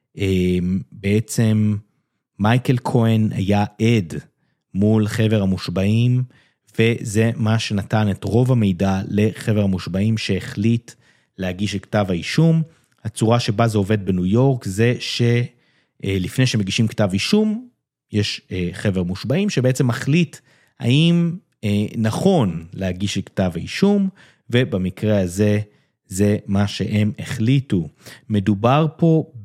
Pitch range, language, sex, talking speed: 95-125 Hz, Hebrew, male, 105 wpm